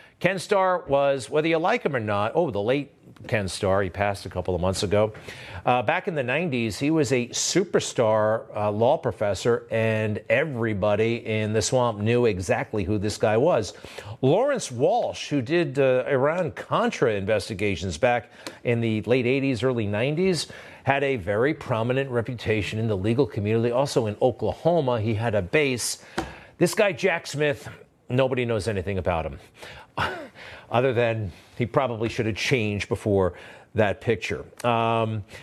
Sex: male